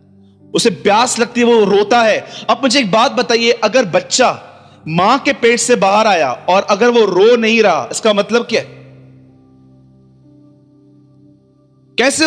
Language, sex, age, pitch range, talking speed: Hindi, male, 30-49, 150-250 Hz, 150 wpm